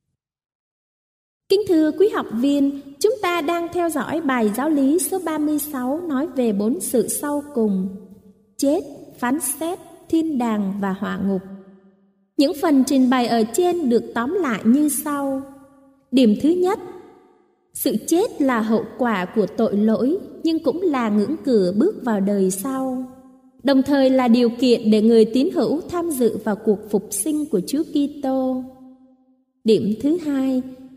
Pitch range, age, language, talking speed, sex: 215-290 Hz, 20-39, Vietnamese, 160 wpm, female